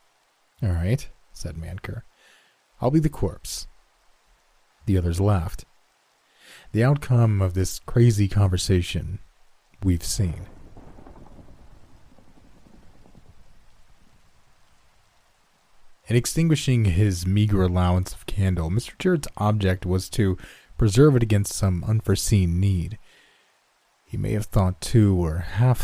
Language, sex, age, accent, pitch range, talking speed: English, male, 30-49, American, 90-110 Hz, 100 wpm